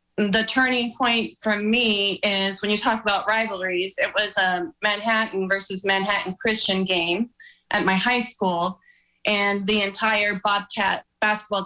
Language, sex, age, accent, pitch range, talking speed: English, female, 20-39, American, 195-225 Hz, 145 wpm